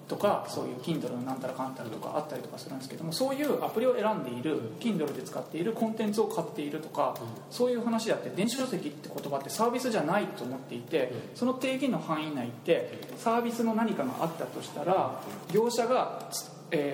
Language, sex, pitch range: Japanese, male, 155-245 Hz